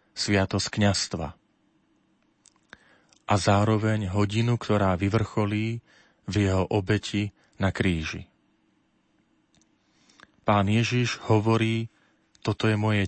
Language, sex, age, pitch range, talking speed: Slovak, male, 40-59, 95-110 Hz, 85 wpm